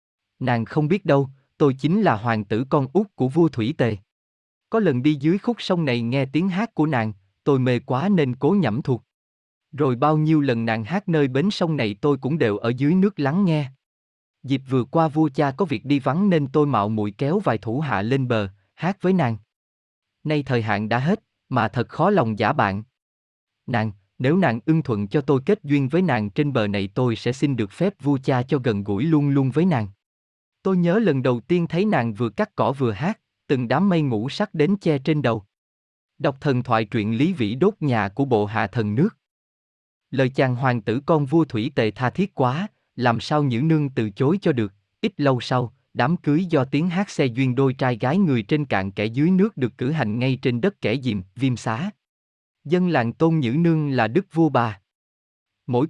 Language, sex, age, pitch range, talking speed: Vietnamese, male, 20-39, 110-160 Hz, 220 wpm